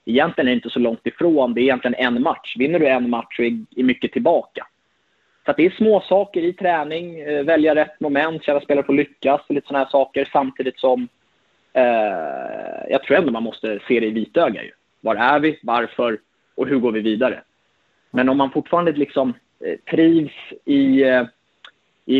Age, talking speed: 20-39, 190 wpm